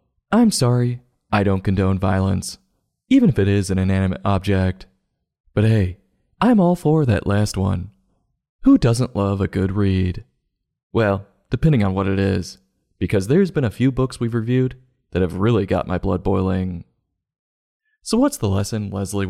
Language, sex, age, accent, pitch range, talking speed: English, male, 20-39, American, 95-120 Hz, 165 wpm